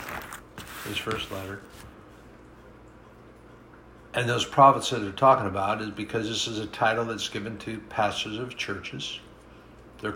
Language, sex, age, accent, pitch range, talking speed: English, male, 60-79, American, 100-120 Hz, 135 wpm